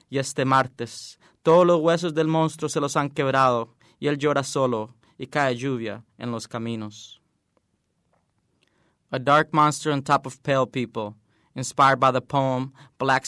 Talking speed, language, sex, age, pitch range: 160 wpm, English, male, 20-39, 125-155 Hz